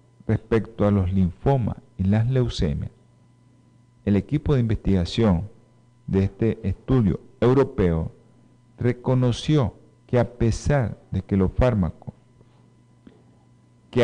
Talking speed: 105 wpm